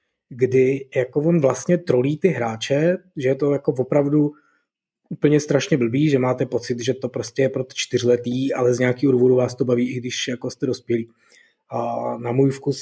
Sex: male